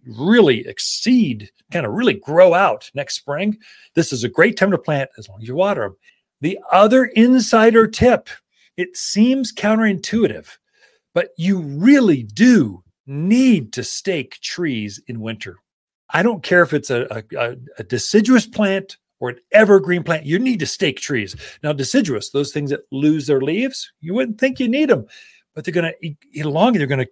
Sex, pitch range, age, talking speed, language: male, 130-220 Hz, 40-59, 175 wpm, English